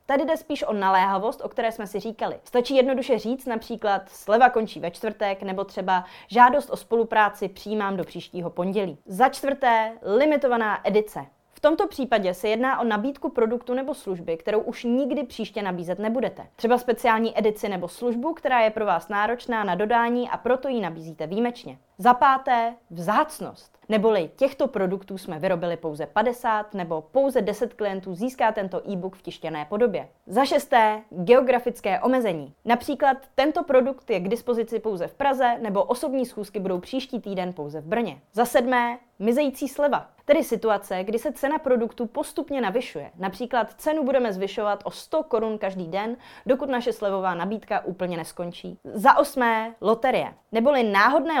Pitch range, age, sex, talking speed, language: 195-255 Hz, 20-39, female, 160 wpm, Czech